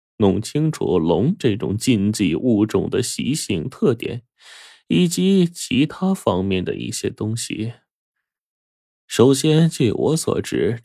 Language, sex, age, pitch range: Chinese, male, 20-39, 95-135 Hz